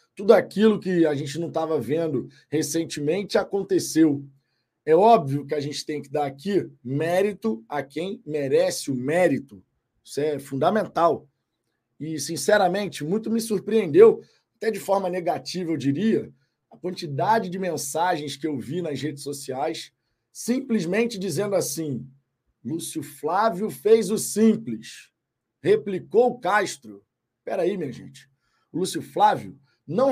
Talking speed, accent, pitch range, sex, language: 135 wpm, Brazilian, 140-200 Hz, male, Portuguese